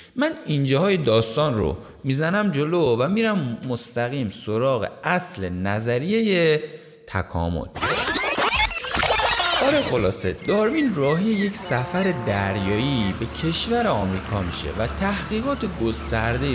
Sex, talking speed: male, 100 wpm